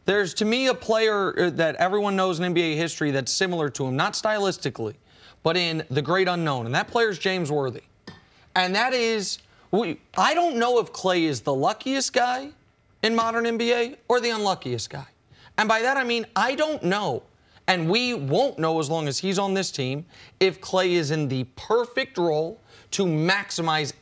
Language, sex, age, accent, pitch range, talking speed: English, male, 30-49, American, 155-215 Hz, 185 wpm